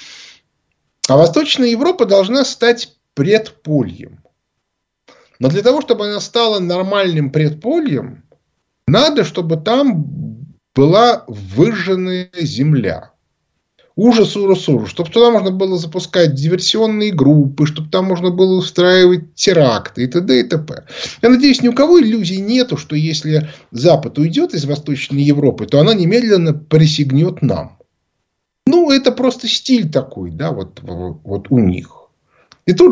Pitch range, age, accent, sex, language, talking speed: 140-210 Hz, 20-39, native, male, Russian, 125 wpm